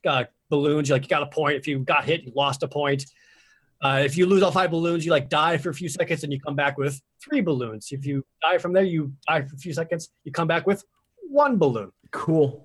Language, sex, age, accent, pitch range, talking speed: English, male, 30-49, American, 145-185 Hz, 265 wpm